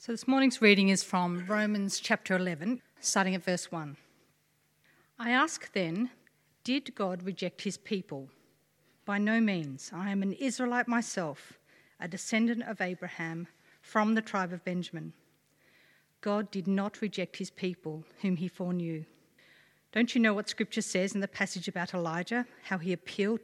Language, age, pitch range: English, 50-69, 175-220 Hz